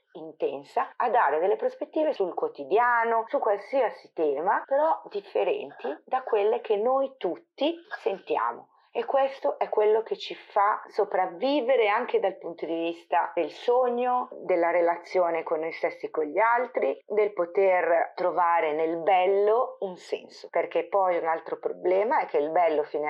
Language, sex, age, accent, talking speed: Italian, female, 40-59, native, 155 wpm